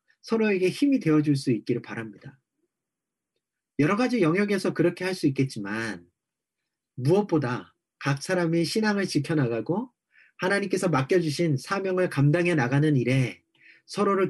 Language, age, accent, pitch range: Korean, 40-59, native, 140-200 Hz